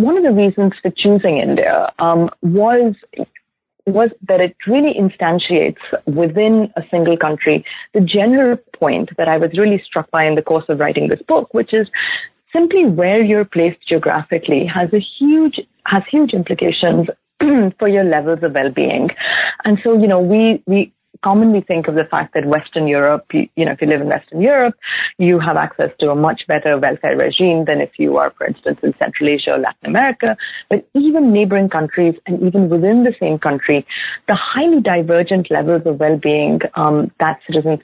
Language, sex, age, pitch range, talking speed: English, female, 30-49, 160-225 Hz, 180 wpm